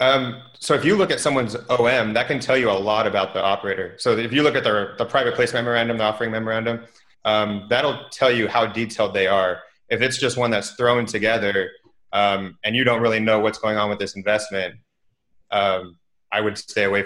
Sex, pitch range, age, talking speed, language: male, 100-120 Hz, 30-49, 220 wpm, English